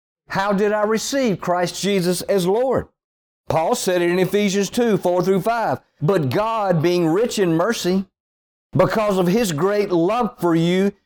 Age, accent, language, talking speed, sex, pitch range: 50-69, American, English, 165 wpm, male, 160-210 Hz